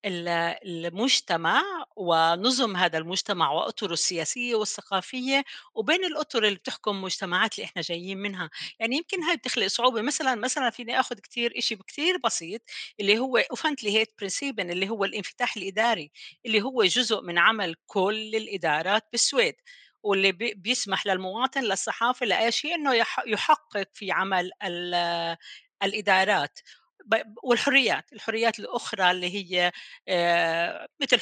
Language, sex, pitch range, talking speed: Arabic, female, 190-245 Hz, 120 wpm